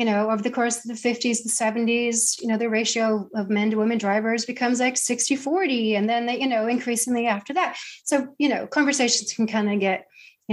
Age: 30-49